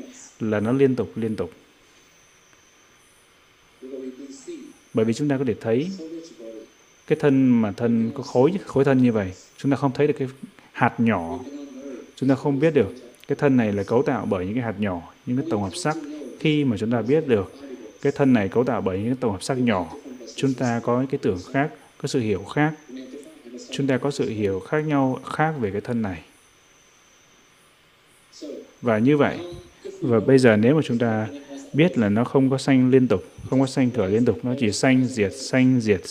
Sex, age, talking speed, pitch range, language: male, 20-39, 205 wpm, 115-140 Hz, Vietnamese